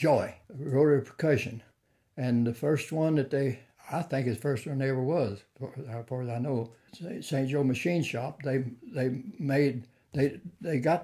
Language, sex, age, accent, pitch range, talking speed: English, male, 60-79, American, 120-140 Hz, 185 wpm